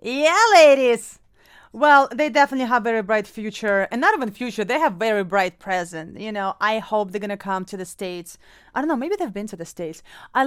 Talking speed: 230 wpm